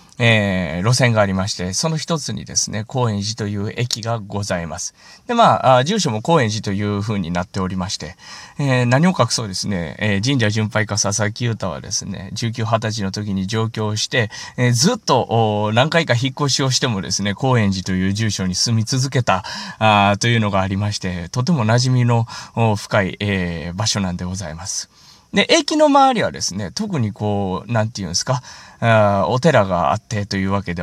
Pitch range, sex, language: 100-135 Hz, male, Japanese